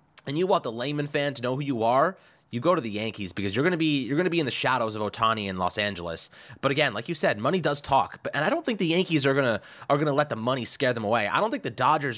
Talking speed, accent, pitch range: 310 wpm, American, 110-155 Hz